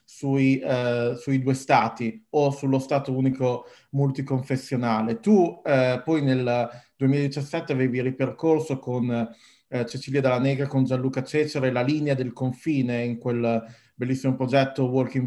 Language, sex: Italian, male